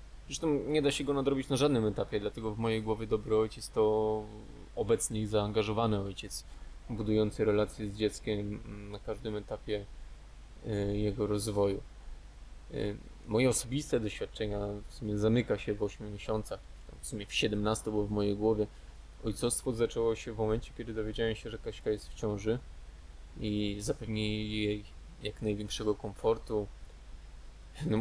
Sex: male